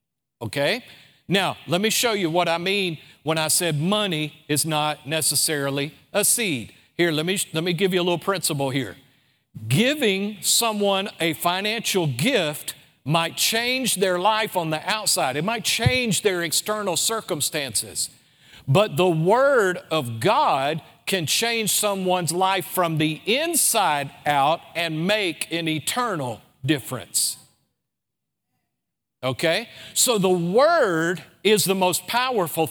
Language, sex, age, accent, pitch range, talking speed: English, male, 50-69, American, 150-200 Hz, 135 wpm